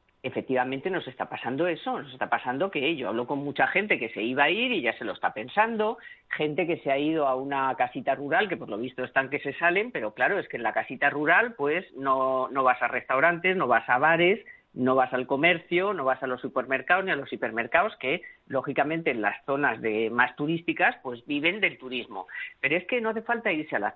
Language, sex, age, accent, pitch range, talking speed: Spanish, female, 40-59, Spanish, 135-185 Hz, 235 wpm